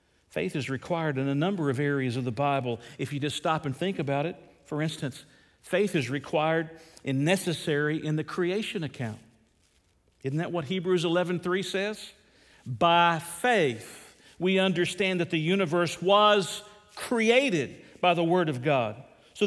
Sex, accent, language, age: male, American, English, 50-69